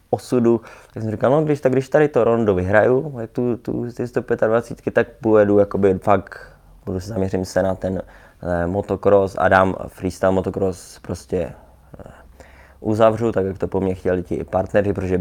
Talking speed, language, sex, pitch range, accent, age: 175 wpm, Czech, male, 95-105 Hz, native, 20-39